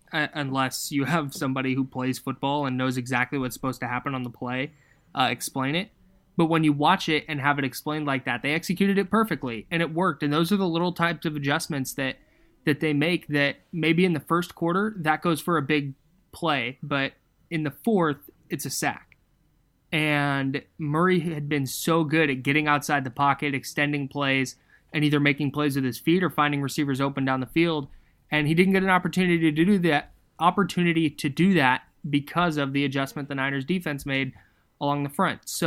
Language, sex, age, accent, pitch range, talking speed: English, male, 20-39, American, 135-160 Hz, 205 wpm